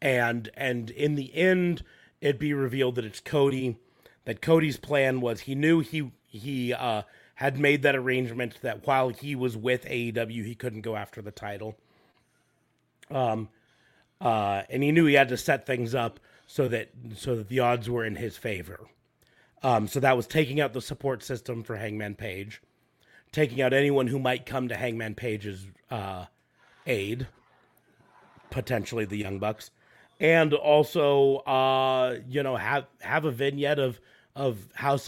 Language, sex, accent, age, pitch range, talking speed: English, male, American, 30-49, 110-135 Hz, 165 wpm